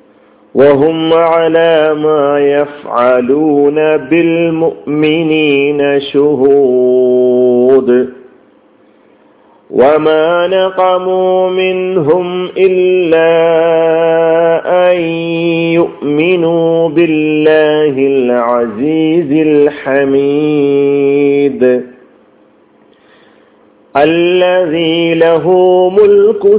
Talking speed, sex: 40 wpm, male